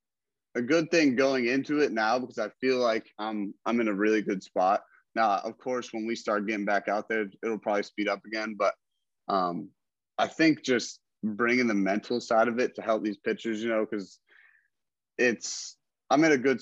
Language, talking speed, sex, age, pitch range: English, 215 wpm, male, 30-49, 100-125 Hz